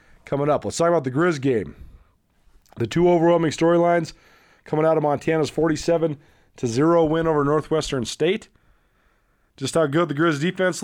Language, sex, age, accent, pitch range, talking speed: English, male, 30-49, American, 130-165 Hz, 155 wpm